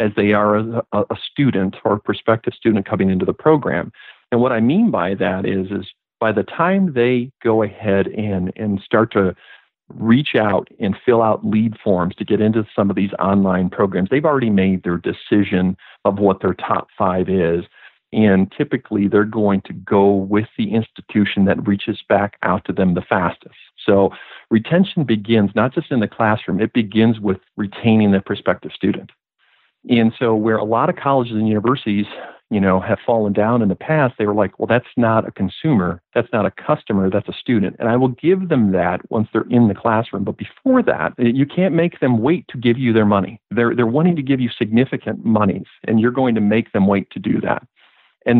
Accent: American